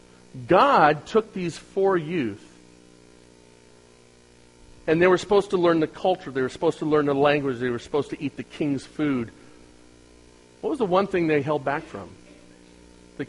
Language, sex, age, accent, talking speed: English, male, 40-59, American, 170 wpm